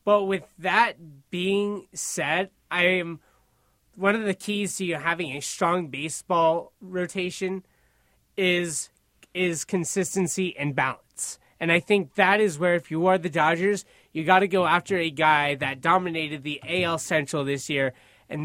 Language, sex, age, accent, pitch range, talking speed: English, male, 20-39, American, 155-185 Hz, 160 wpm